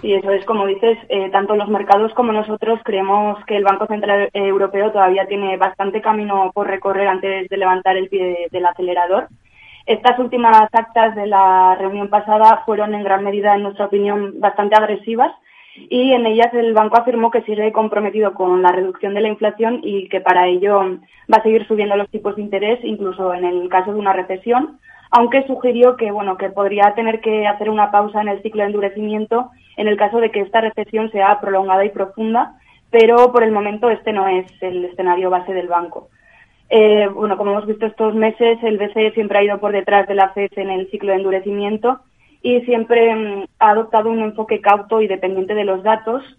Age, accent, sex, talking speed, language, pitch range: 20-39, Spanish, female, 200 wpm, Spanish, 195-220 Hz